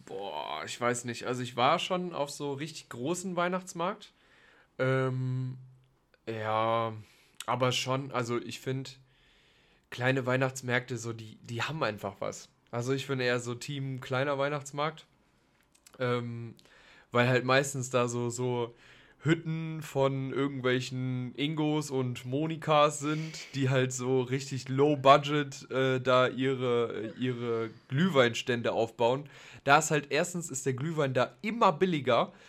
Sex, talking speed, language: male, 135 wpm, German